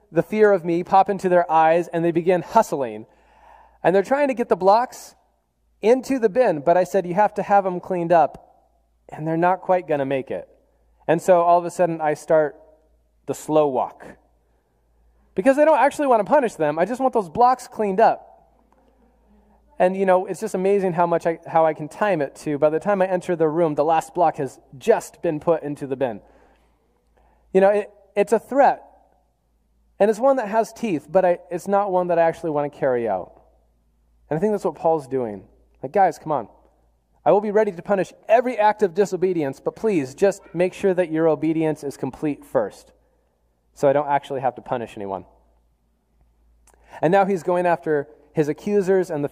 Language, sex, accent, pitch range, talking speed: English, male, American, 145-205 Hz, 205 wpm